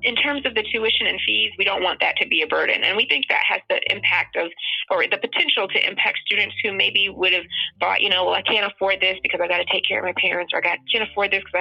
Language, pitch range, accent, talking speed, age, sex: English, 185-220 Hz, American, 290 wpm, 20-39, female